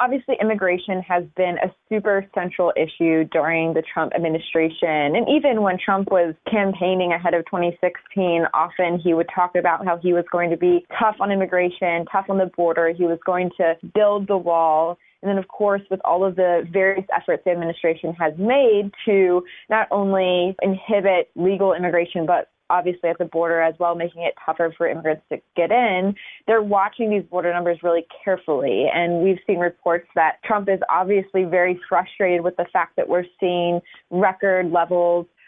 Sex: female